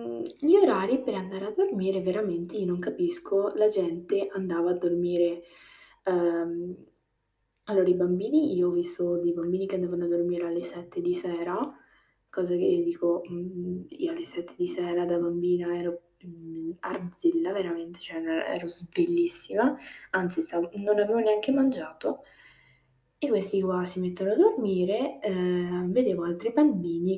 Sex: female